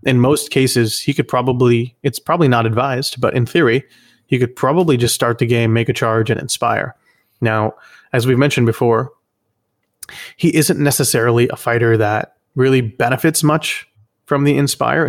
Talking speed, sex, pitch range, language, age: 165 wpm, male, 115-130 Hz, English, 30-49